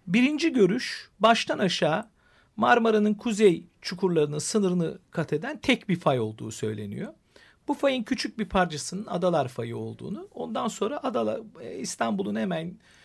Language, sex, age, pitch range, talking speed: Turkish, male, 50-69, 150-220 Hz, 130 wpm